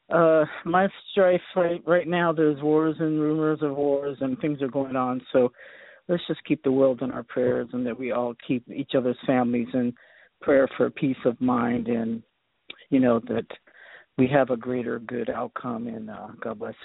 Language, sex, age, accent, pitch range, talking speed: English, male, 50-69, American, 130-165 Hz, 190 wpm